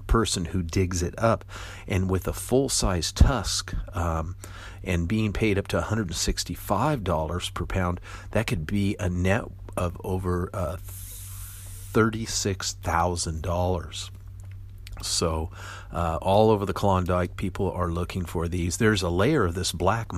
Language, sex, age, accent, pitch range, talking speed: English, male, 50-69, American, 90-100 Hz, 135 wpm